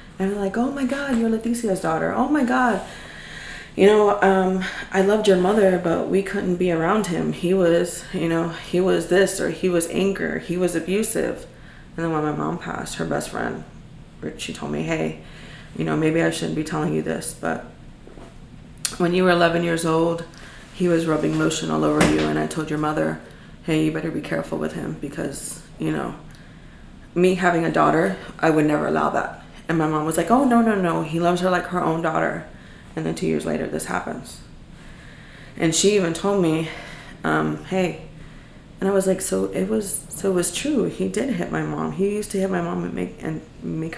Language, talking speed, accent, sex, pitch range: English, 210 wpm, American, female, 155-195 Hz